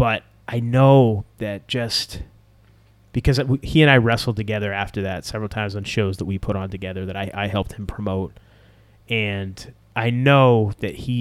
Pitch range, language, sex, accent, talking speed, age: 105-120 Hz, English, male, American, 175 wpm, 30-49